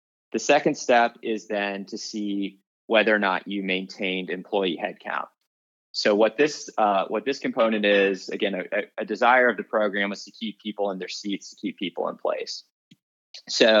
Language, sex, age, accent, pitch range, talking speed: English, male, 20-39, American, 95-110 Hz, 185 wpm